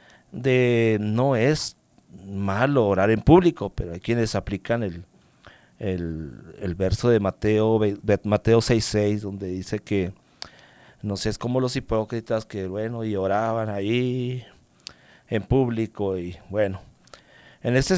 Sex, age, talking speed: male, 50-69, 135 wpm